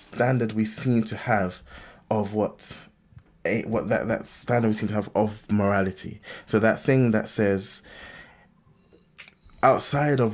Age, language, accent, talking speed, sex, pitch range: 20-39, English, British, 145 wpm, male, 95-110 Hz